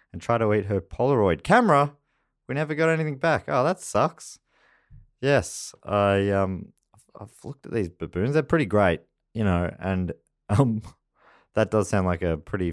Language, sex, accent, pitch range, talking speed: English, male, Australian, 80-120 Hz, 170 wpm